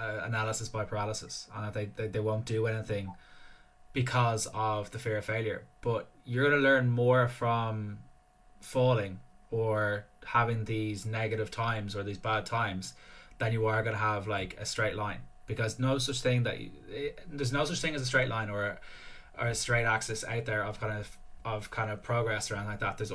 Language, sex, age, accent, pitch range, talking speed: English, male, 10-29, Irish, 105-120 Hz, 195 wpm